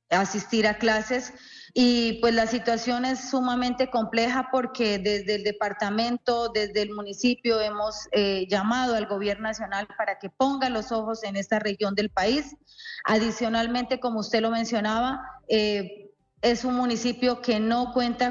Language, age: Spanish, 30-49